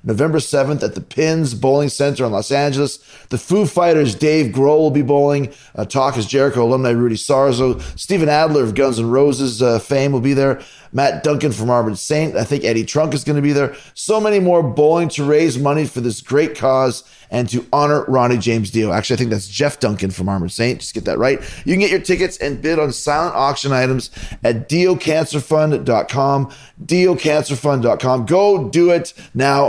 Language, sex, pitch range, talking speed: English, male, 120-150 Hz, 200 wpm